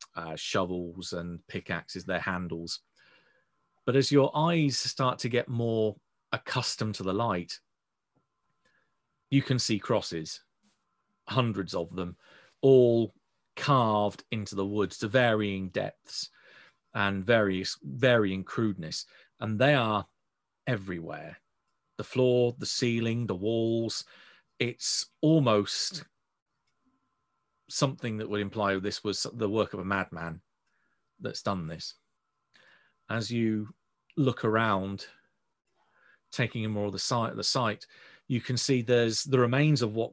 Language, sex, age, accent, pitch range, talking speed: English, male, 40-59, British, 100-120 Hz, 125 wpm